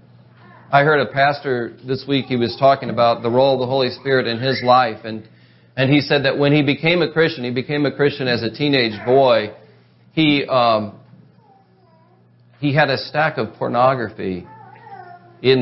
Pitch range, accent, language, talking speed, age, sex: 100-130 Hz, American, English, 175 wpm, 40-59, male